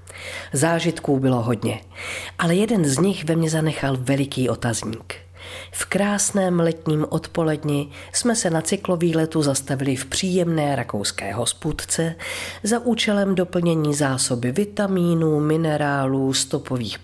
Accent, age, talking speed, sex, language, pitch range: native, 40-59, 115 wpm, female, Czech, 140-195 Hz